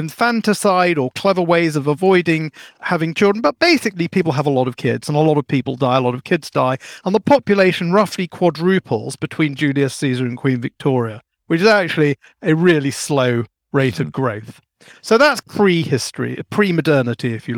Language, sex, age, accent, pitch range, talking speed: English, male, 40-59, British, 140-190 Hz, 180 wpm